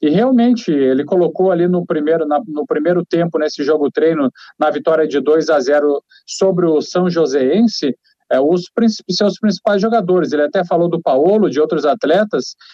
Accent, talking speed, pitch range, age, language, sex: Brazilian, 150 wpm, 160-200 Hz, 40-59, Portuguese, male